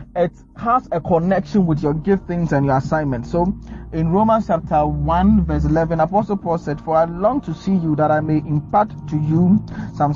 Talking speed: 200 wpm